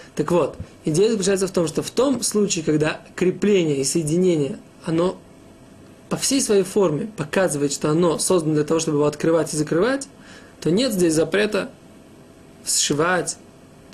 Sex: male